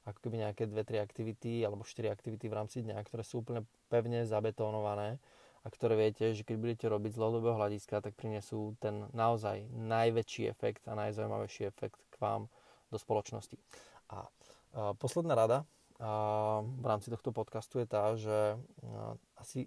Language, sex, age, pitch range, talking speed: Slovak, male, 20-39, 110-125 Hz, 160 wpm